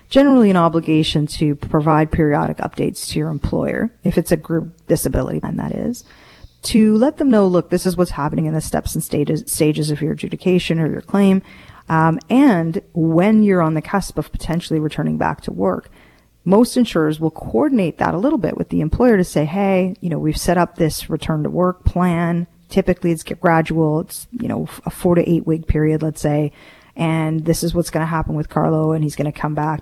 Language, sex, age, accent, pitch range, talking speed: English, female, 40-59, American, 155-195 Hz, 210 wpm